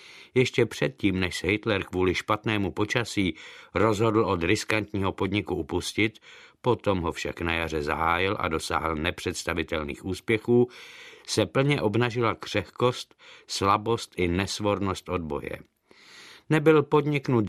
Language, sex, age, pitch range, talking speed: Czech, male, 60-79, 100-120 Hz, 115 wpm